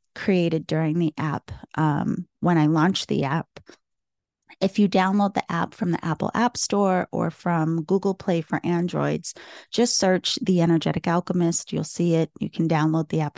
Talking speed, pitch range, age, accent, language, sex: 175 wpm, 170-205 Hz, 30-49, American, English, female